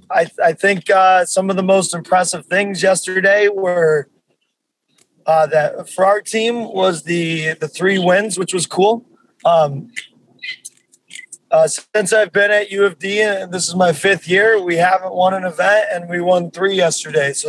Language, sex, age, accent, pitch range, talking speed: English, male, 30-49, American, 170-200 Hz, 180 wpm